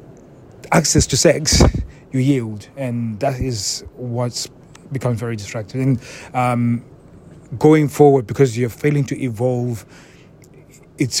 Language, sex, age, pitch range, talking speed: English, male, 30-49, 120-145 Hz, 120 wpm